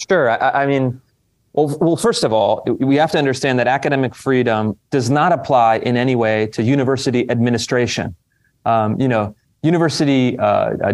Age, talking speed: 30-49, 165 wpm